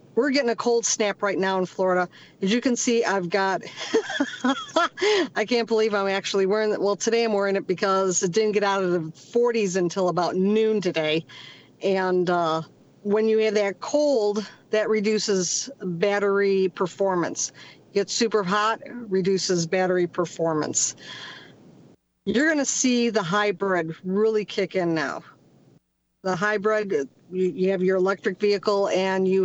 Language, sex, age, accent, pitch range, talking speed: English, female, 50-69, American, 180-210 Hz, 155 wpm